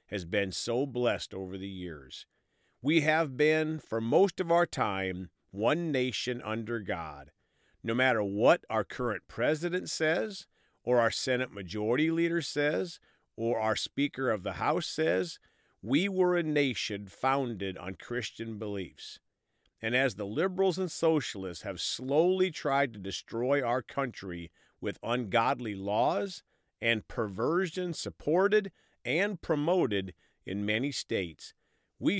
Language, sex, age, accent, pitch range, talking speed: English, male, 40-59, American, 100-150 Hz, 130 wpm